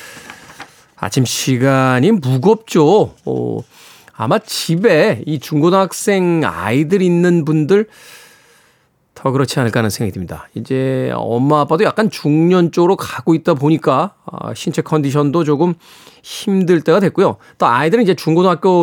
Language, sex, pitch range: Korean, male, 145-215 Hz